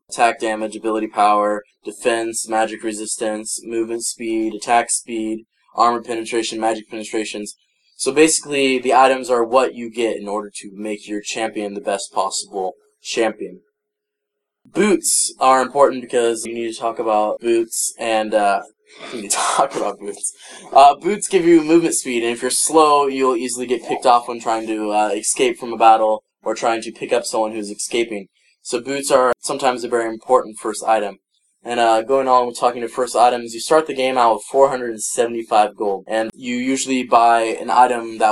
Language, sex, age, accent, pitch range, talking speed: English, male, 10-29, American, 105-125 Hz, 180 wpm